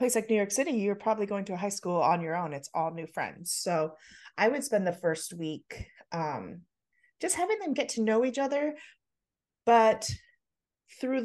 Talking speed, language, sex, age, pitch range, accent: 195 wpm, English, female, 30-49, 170-215 Hz, American